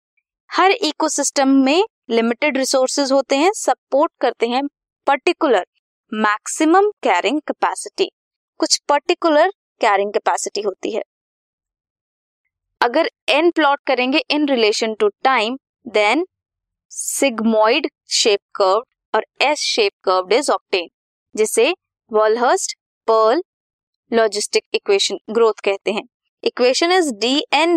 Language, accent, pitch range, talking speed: Hindi, native, 225-335 Hz, 110 wpm